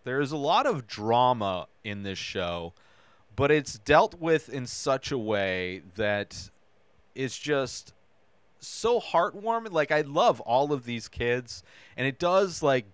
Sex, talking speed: male, 150 wpm